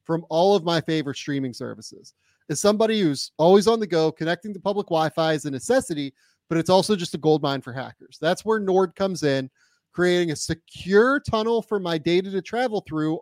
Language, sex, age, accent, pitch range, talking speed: English, male, 30-49, American, 150-200 Hz, 205 wpm